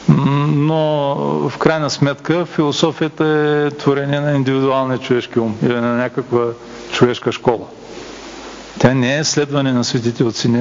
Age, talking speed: 50-69, 135 wpm